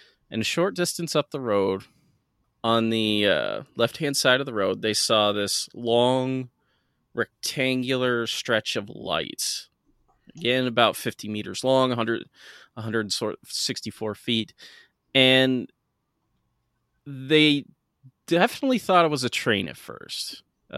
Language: English